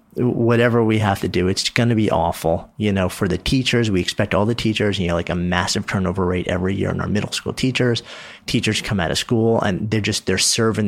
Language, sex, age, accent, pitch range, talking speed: English, male, 30-49, American, 90-110 Hz, 245 wpm